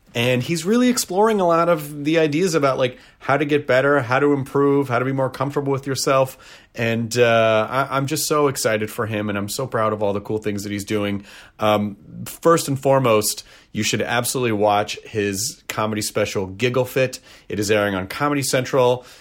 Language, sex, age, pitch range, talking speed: English, male, 30-49, 110-155 Hz, 205 wpm